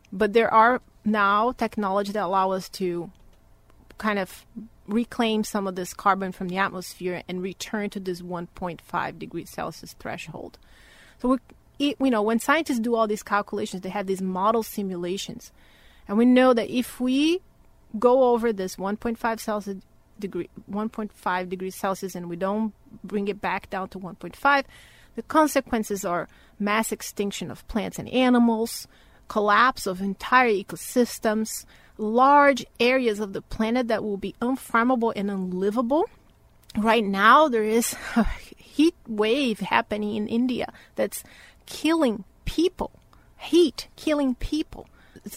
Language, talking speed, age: English, 140 wpm, 30-49